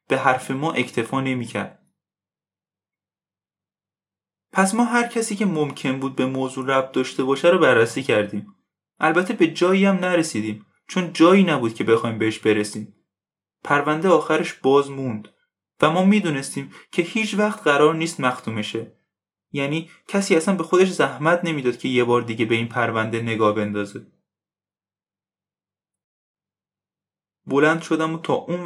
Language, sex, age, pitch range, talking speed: Persian, male, 20-39, 110-165 Hz, 140 wpm